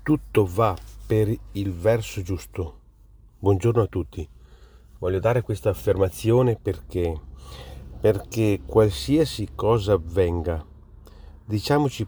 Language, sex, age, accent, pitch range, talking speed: Italian, male, 40-59, native, 95-130 Hz, 95 wpm